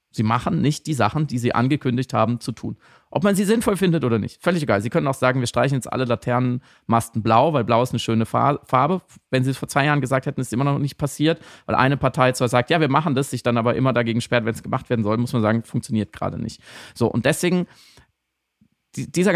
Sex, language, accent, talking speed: male, German, German, 250 wpm